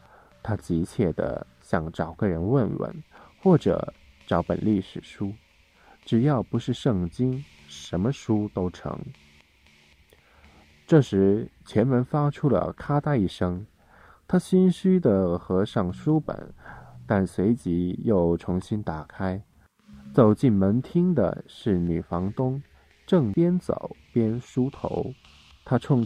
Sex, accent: male, native